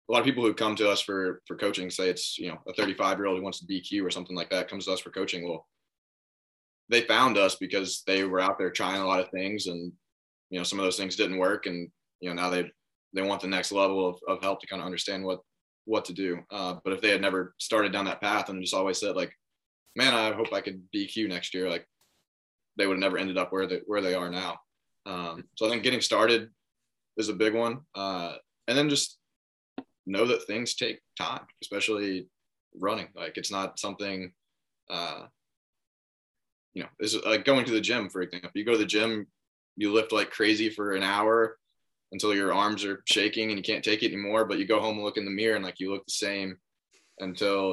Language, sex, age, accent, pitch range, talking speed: English, male, 20-39, American, 90-110 Hz, 235 wpm